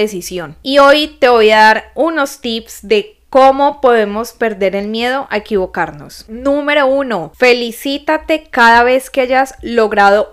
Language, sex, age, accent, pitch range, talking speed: Spanish, female, 10-29, Colombian, 215-275 Hz, 145 wpm